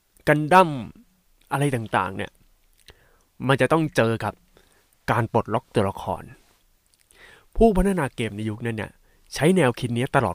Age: 20-39